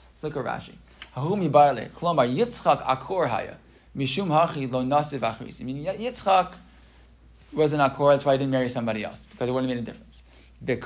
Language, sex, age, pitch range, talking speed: English, male, 20-39, 130-160 Hz, 115 wpm